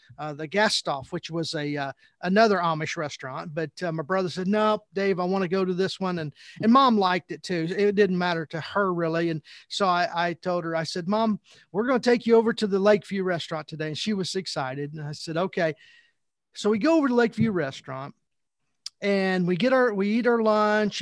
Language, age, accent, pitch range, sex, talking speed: English, 40-59, American, 170-215 Hz, male, 225 wpm